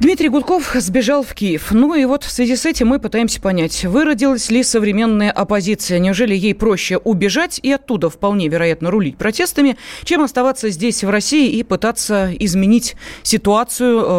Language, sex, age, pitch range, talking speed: Russian, female, 30-49, 185-245 Hz, 160 wpm